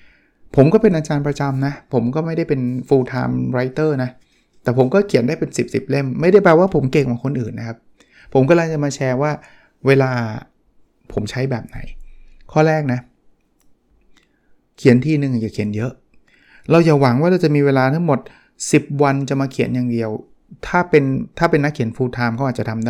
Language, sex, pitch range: Thai, male, 125-155 Hz